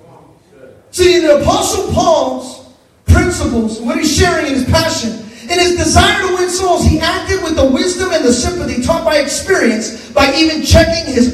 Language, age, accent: English, 30-49, American